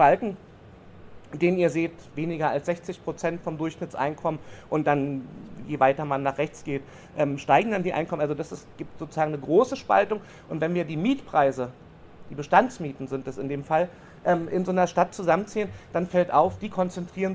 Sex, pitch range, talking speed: male, 145-180 Hz, 180 wpm